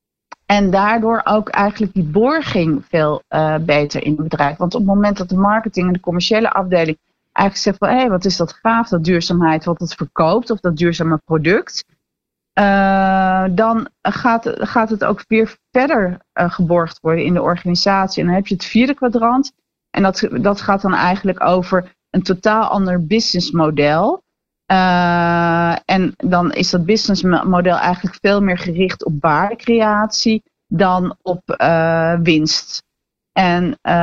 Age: 40-59